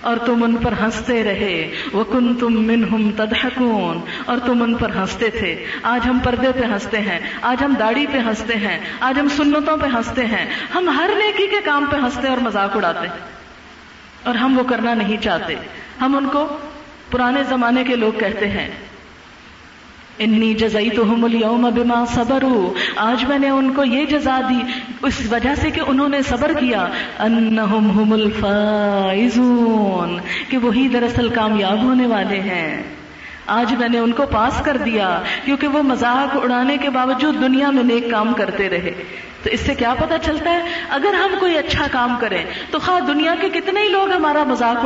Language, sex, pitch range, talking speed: Urdu, female, 220-285 Hz, 180 wpm